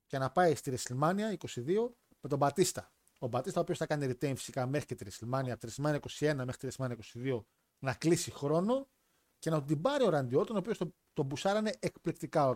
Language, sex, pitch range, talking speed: Greek, male, 125-175 Hz, 215 wpm